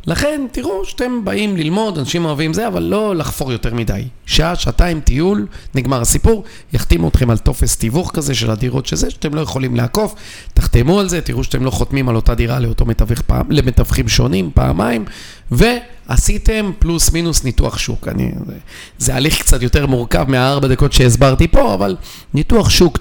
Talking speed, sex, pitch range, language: 165 wpm, male, 115-160 Hz, Hebrew